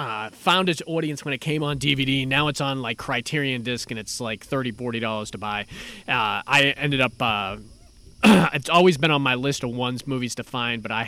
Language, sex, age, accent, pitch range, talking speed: English, male, 30-49, American, 115-155 Hz, 210 wpm